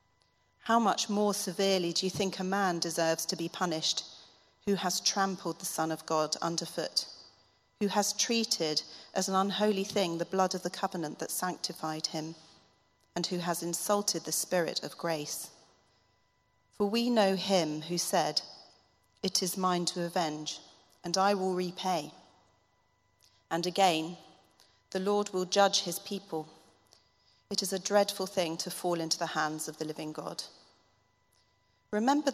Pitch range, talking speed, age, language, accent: 165-200 Hz, 150 wpm, 40-59, English, British